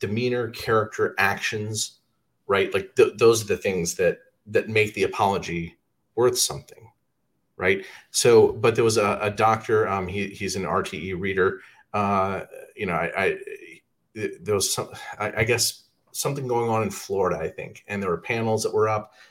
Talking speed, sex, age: 175 wpm, male, 30-49